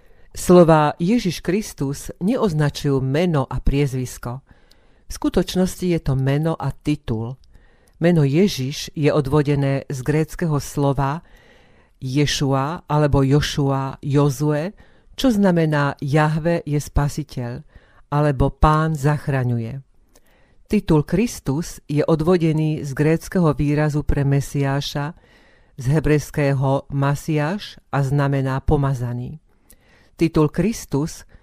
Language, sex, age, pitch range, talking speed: Slovak, female, 40-59, 140-160 Hz, 95 wpm